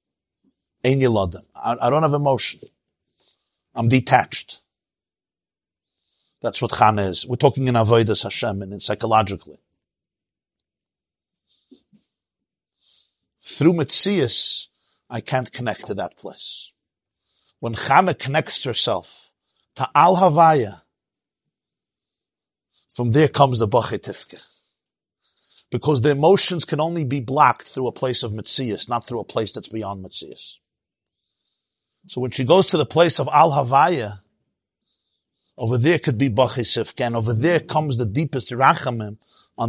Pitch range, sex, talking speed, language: 110-145 Hz, male, 120 wpm, English